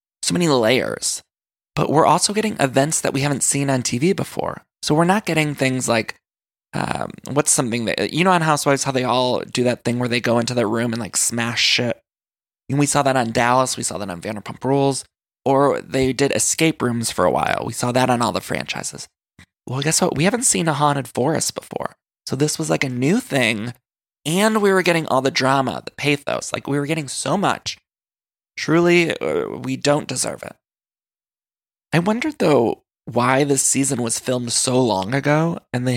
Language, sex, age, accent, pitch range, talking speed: English, male, 20-39, American, 125-150 Hz, 205 wpm